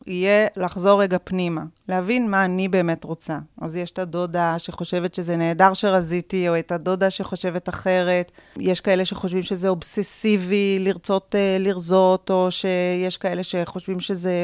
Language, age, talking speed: Hebrew, 30-49, 140 wpm